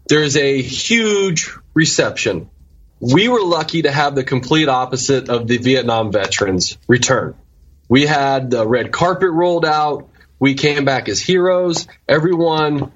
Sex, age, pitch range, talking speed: male, 20-39, 120-150 Hz, 140 wpm